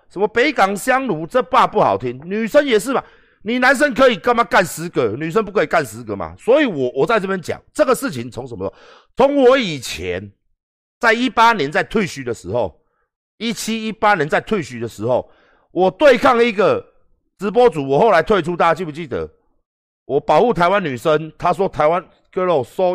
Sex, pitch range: male, 145-230 Hz